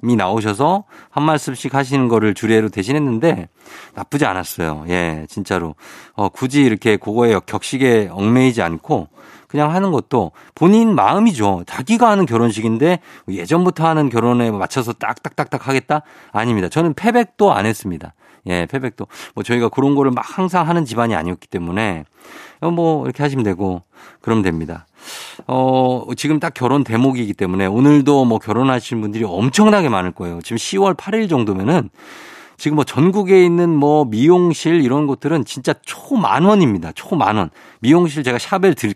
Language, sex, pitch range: Korean, male, 110-170 Hz